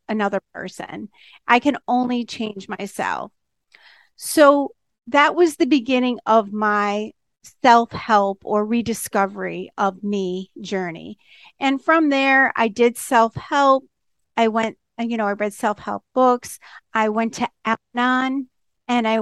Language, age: English, 40-59